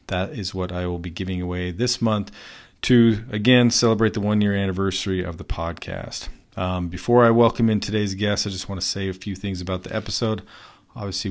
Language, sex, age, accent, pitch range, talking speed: English, male, 40-59, American, 90-105 Hz, 200 wpm